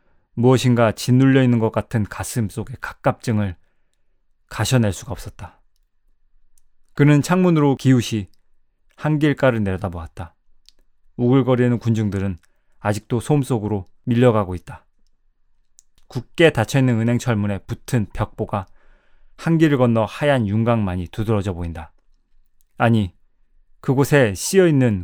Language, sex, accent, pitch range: Korean, male, native, 95-125 Hz